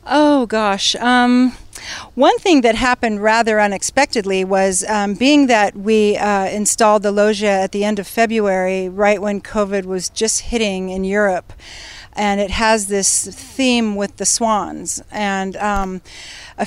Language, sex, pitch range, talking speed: English, female, 195-235 Hz, 150 wpm